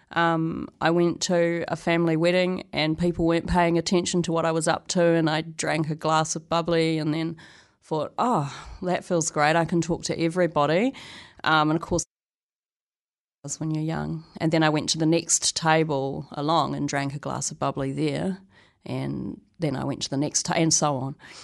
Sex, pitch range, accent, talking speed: female, 150-175 Hz, Australian, 200 wpm